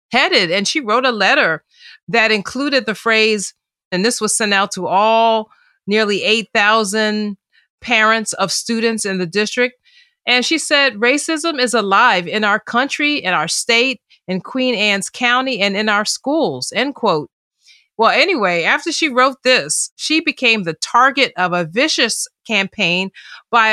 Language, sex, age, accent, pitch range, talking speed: English, female, 40-59, American, 185-240 Hz, 155 wpm